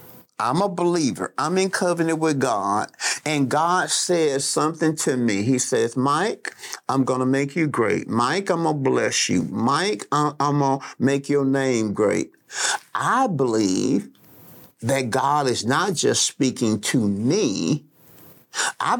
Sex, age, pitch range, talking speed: male, 50-69, 130-190 Hz, 150 wpm